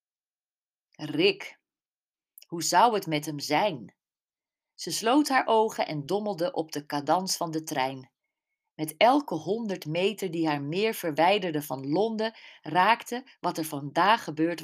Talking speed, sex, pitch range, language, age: 140 wpm, female, 155-215 Hz, Dutch, 40-59